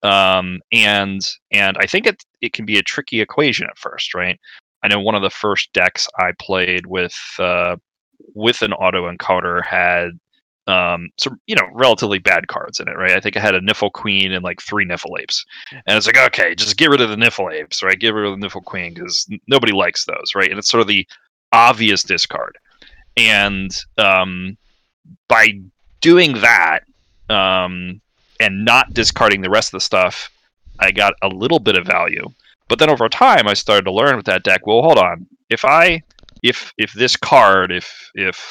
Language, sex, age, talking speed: English, male, 30-49, 200 wpm